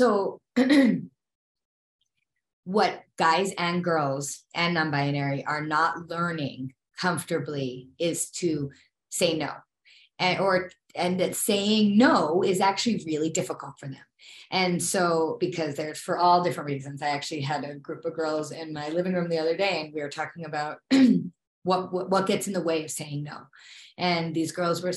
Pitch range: 155-195 Hz